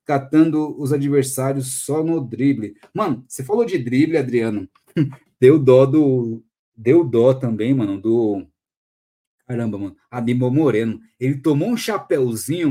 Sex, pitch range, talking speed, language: male, 125-200 Hz, 130 wpm, Portuguese